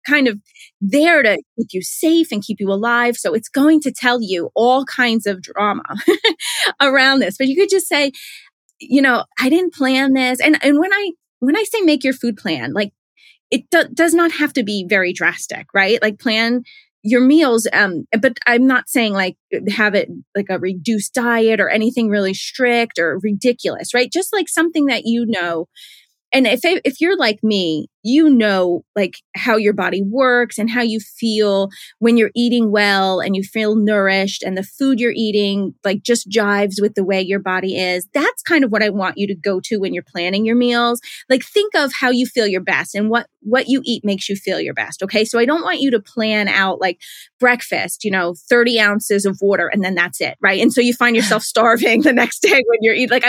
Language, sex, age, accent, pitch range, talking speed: English, female, 20-39, American, 205-265 Hz, 215 wpm